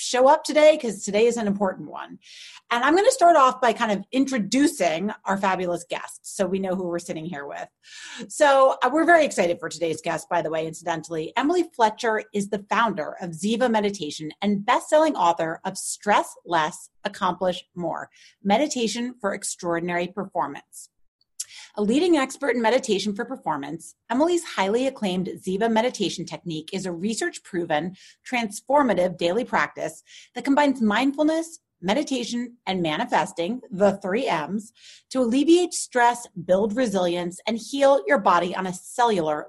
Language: English